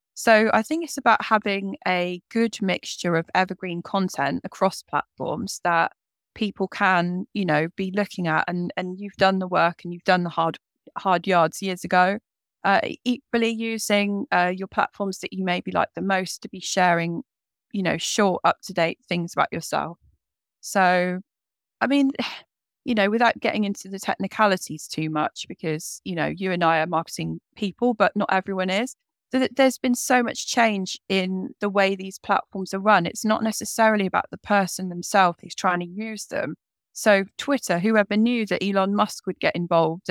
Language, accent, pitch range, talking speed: English, British, 175-215 Hz, 180 wpm